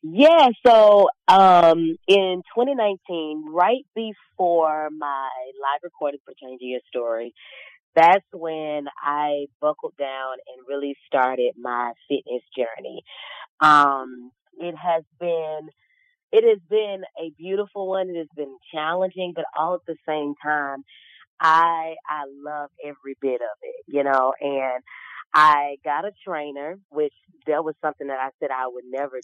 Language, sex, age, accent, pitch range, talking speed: English, female, 20-39, American, 140-175 Hz, 145 wpm